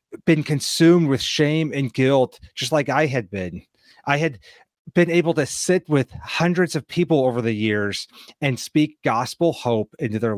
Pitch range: 120-155 Hz